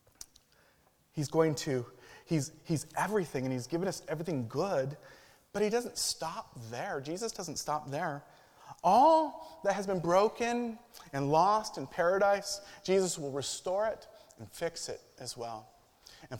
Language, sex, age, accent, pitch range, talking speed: English, male, 30-49, American, 125-170 Hz, 145 wpm